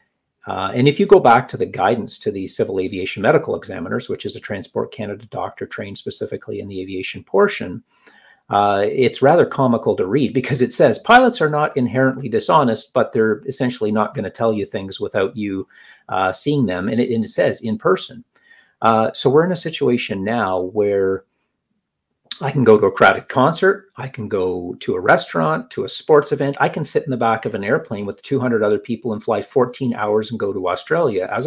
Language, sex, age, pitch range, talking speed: English, male, 40-59, 100-135 Hz, 205 wpm